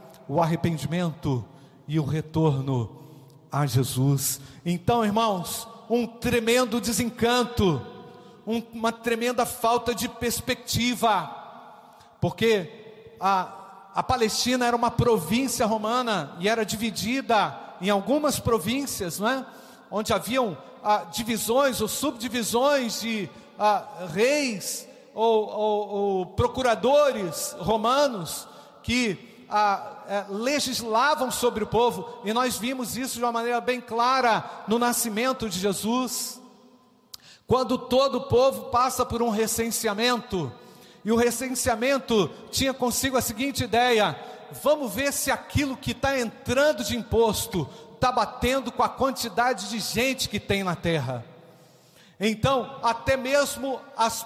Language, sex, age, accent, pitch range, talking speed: Portuguese, male, 50-69, Brazilian, 205-250 Hz, 120 wpm